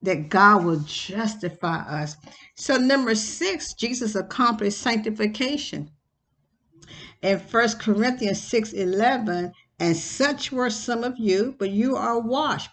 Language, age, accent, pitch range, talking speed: English, 60-79, American, 180-235 Hz, 125 wpm